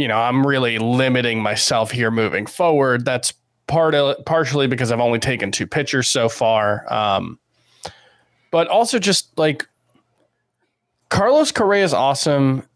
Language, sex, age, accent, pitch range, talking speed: English, male, 20-39, American, 120-155 Hz, 140 wpm